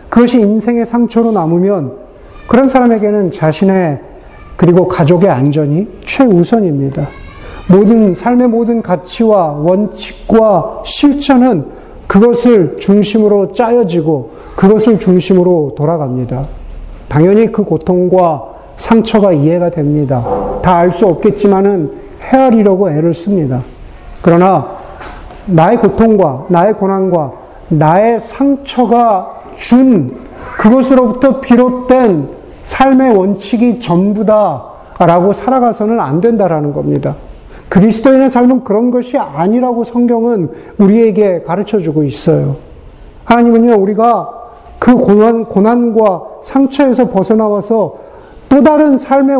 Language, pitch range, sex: Korean, 170-235 Hz, male